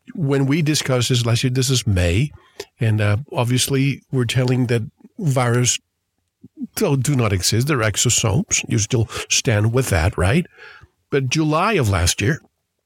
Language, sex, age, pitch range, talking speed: English, male, 50-69, 105-140 Hz, 155 wpm